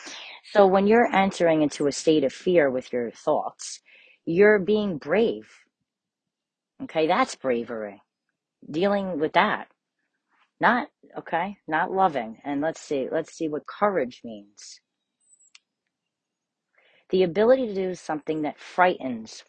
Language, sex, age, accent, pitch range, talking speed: English, female, 40-59, American, 155-220 Hz, 125 wpm